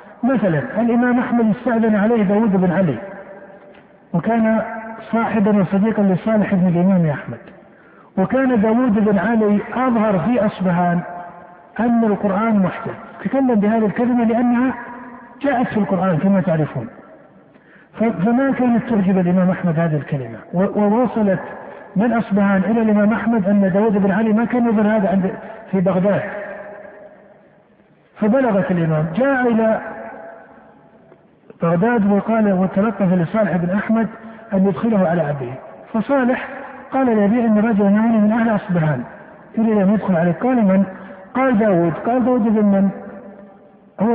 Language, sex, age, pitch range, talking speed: Arabic, male, 50-69, 195-235 Hz, 125 wpm